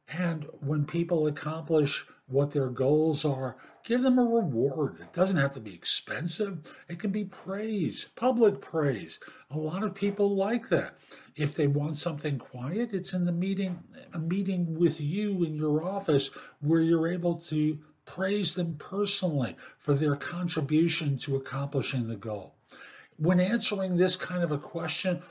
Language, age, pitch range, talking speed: English, 50-69, 140-185 Hz, 160 wpm